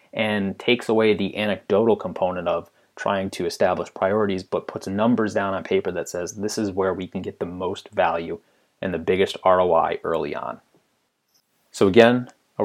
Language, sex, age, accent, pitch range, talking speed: English, male, 30-49, American, 95-125 Hz, 175 wpm